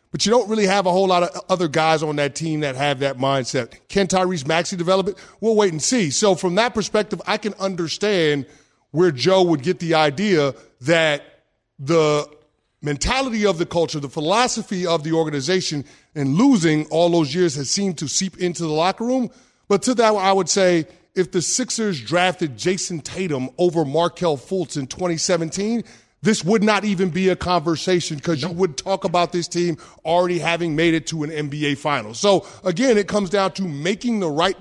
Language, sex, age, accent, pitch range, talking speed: English, male, 30-49, American, 165-245 Hz, 195 wpm